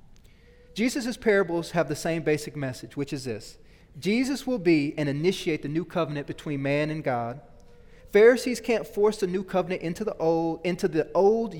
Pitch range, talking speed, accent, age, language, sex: 150-210 Hz, 175 wpm, American, 30-49, English, male